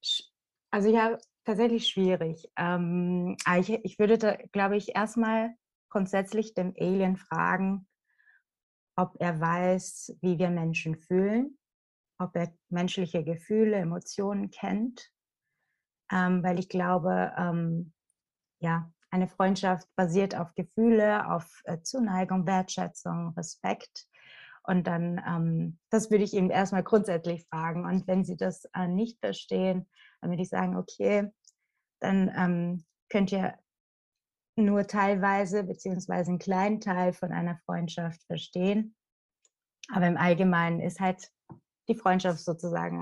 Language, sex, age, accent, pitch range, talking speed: German, female, 20-39, German, 175-200 Hz, 115 wpm